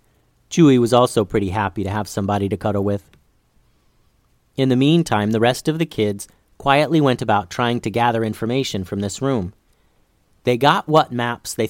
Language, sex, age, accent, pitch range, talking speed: English, male, 40-59, American, 100-150 Hz, 175 wpm